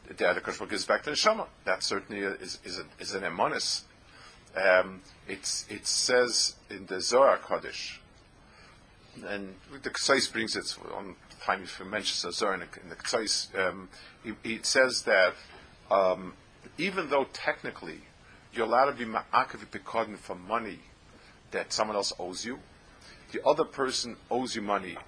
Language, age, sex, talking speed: English, 50-69, male, 160 wpm